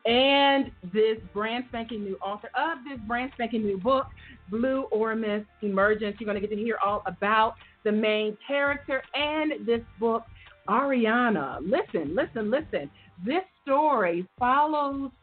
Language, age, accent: English, 40-59, American